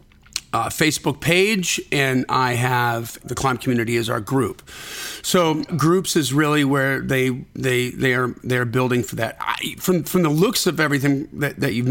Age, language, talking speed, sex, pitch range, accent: 40-59, English, 180 wpm, male, 125-155 Hz, American